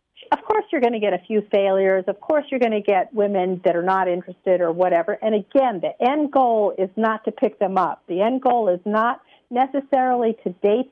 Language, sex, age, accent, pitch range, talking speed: English, female, 50-69, American, 200-265 Hz, 225 wpm